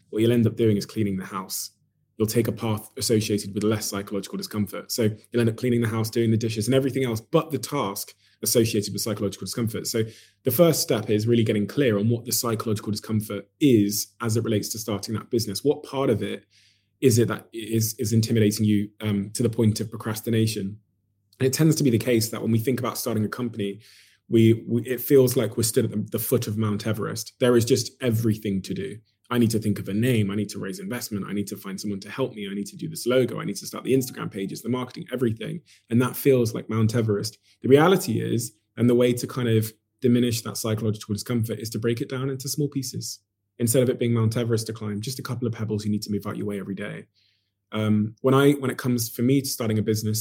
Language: English